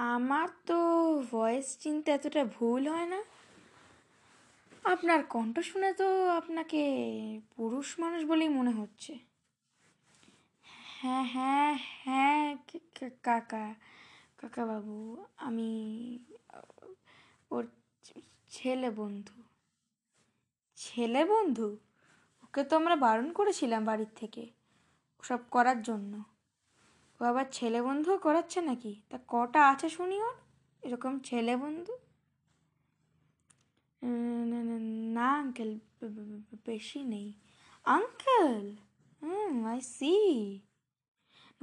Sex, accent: female, native